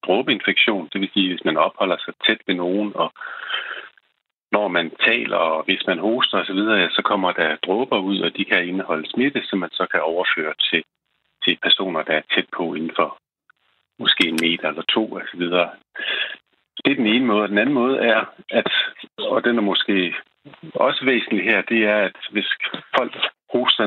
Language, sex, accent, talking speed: Danish, male, native, 185 wpm